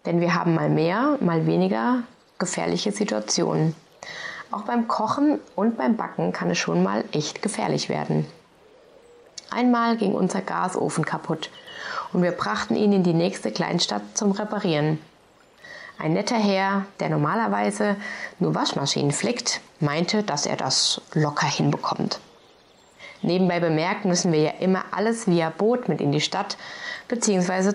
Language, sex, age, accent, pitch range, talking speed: German, female, 20-39, German, 170-230 Hz, 140 wpm